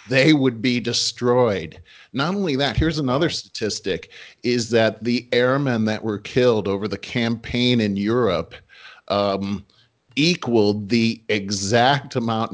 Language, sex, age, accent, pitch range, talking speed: English, male, 40-59, American, 105-130 Hz, 130 wpm